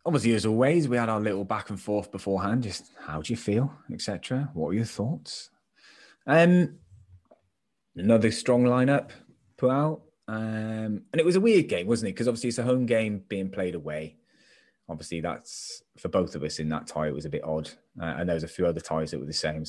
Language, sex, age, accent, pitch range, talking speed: English, male, 20-39, British, 90-115 Hz, 220 wpm